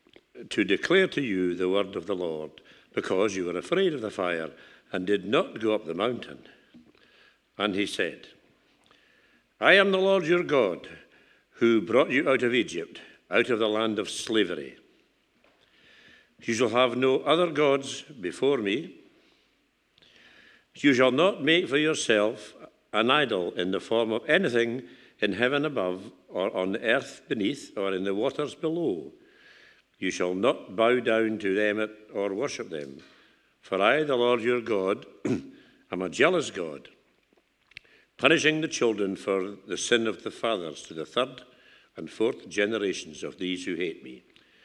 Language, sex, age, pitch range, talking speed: English, male, 60-79, 100-145 Hz, 155 wpm